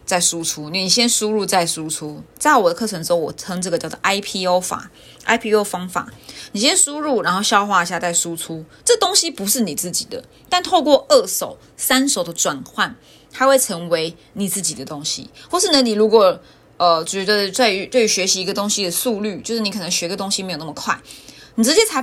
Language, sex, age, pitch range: Chinese, female, 20-39, 180-240 Hz